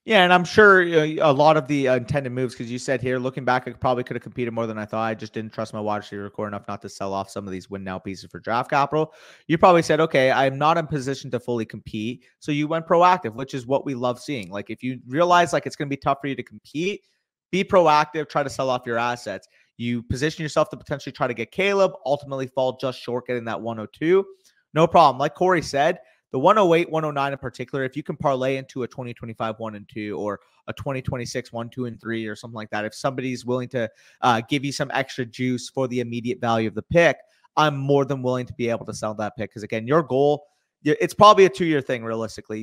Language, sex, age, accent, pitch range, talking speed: English, male, 30-49, American, 115-150 Hz, 250 wpm